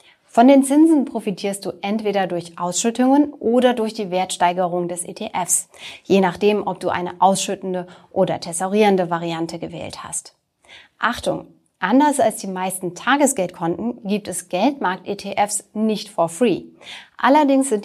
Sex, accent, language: female, German, German